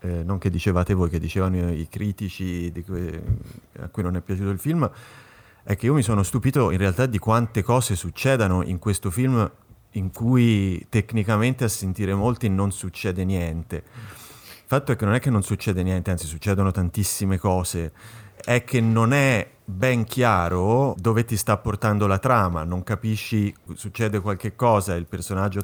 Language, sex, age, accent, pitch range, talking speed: Italian, male, 30-49, native, 95-115 Hz, 170 wpm